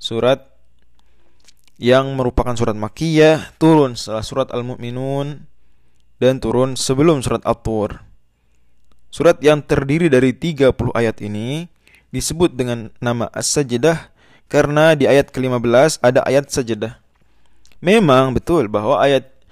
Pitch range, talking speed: 115-150 Hz, 110 wpm